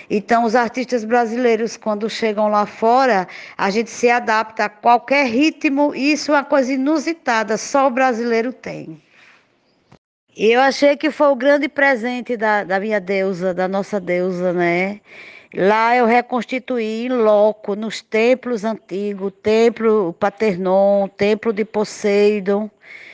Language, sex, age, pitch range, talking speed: Portuguese, female, 20-39, 205-255 Hz, 140 wpm